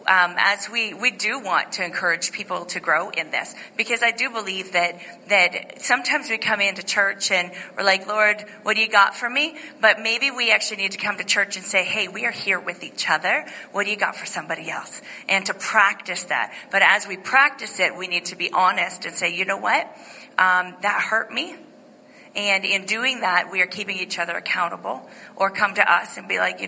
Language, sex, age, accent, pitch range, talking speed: English, female, 40-59, American, 185-225 Hz, 225 wpm